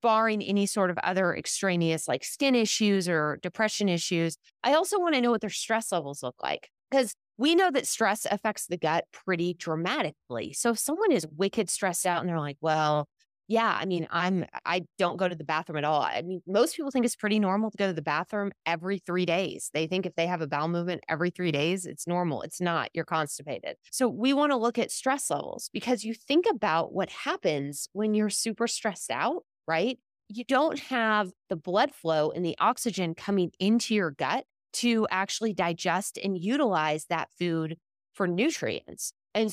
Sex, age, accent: female, 20-39, American